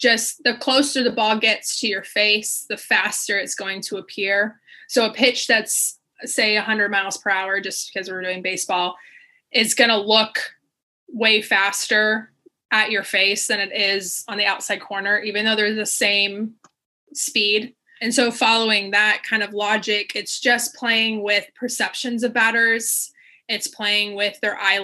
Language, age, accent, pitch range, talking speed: English, 20-39, American, 205-240 Hz, 170 wpm